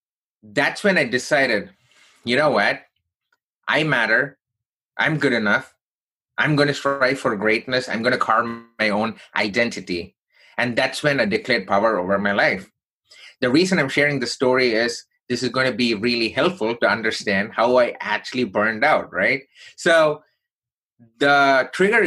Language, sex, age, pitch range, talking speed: English, male, 30-49, 110-135 Hz, 160 wpm